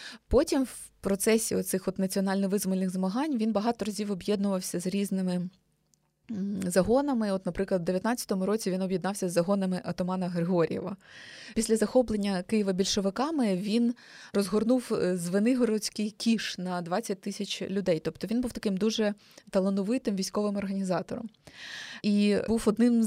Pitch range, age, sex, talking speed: 185-220 Hz, 20-39, female, 125 wpm